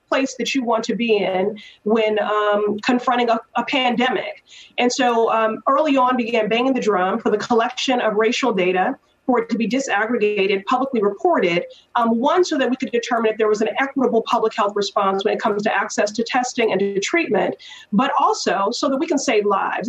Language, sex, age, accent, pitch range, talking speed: English, female, 30-49, American, 210-260 Hz, 205 wpm